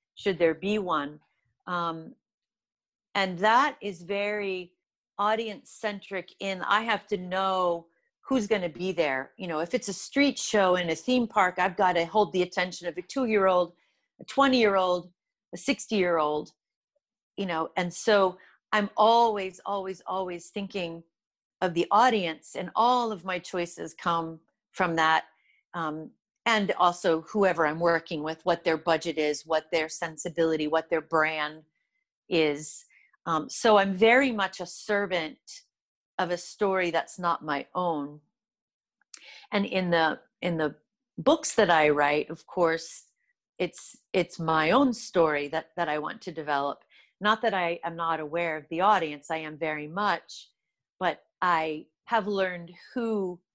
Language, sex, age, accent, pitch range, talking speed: English, female, 40-59, American, 165-210 Hz, 160 wpm